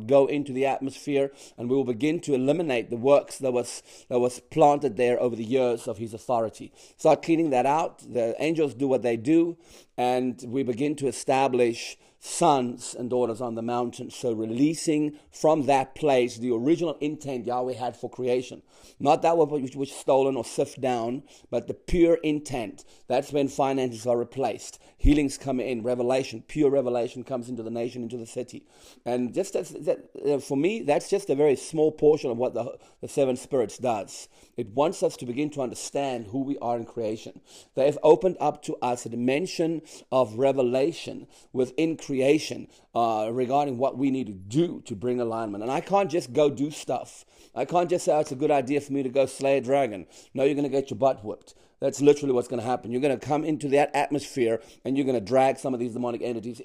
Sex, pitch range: male, 125-145 Hz